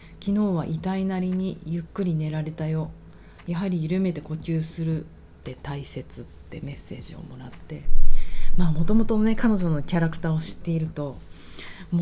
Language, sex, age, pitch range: Japanese, female, 30-49, 135-175 Hz